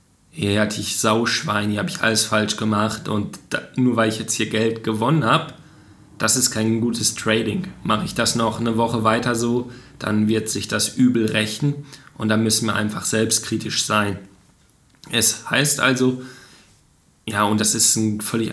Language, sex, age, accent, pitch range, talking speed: German, male, 20-39, German, 110-120 Hz, 180 wpm